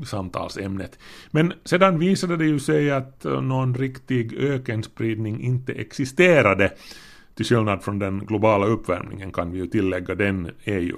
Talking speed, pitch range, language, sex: 135 wpm, 95-130 Hz, Swedish, male